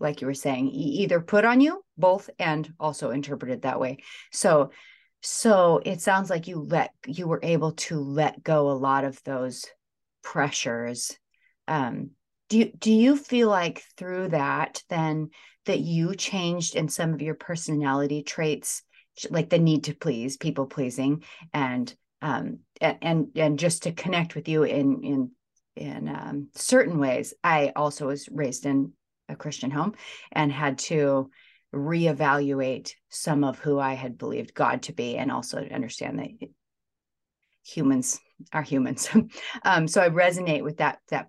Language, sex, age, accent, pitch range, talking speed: English, female, 30-49, American, 135-175 Hz, 160 wpm